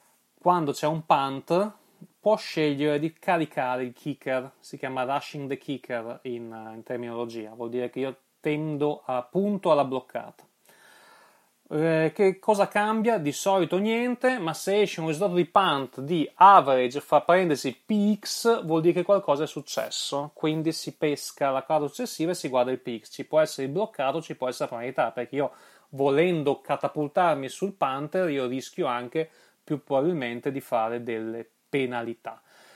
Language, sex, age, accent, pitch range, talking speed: Italian, male, 30-49, native, 135-175 Hz, 160 wpm